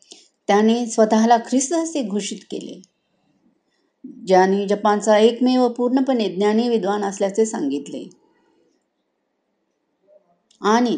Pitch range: 200-245 Hz